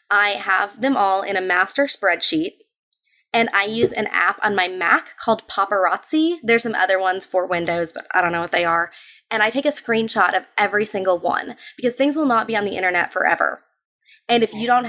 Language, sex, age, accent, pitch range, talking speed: English, female, 20-39, American, 185-230 Hz, 215 wpm